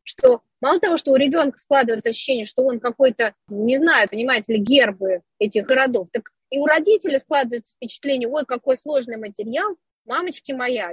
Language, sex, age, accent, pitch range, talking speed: Russian, female, 30-49, native, 250-310 Hz, 165 wpm